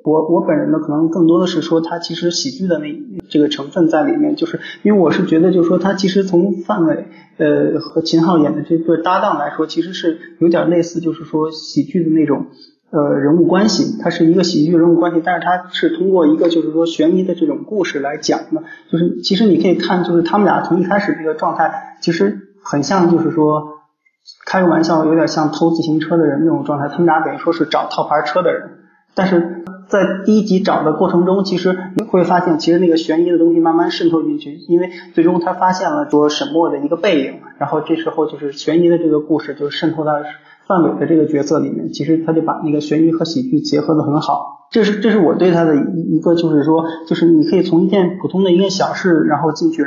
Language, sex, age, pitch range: Chinese, male, 20-39, 155-185 Hz